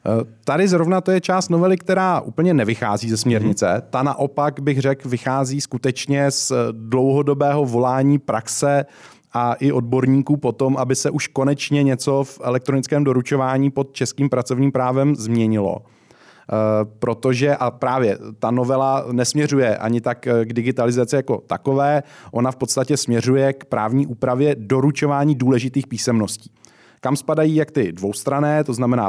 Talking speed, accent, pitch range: 140 wpm, native, 120-145 Hz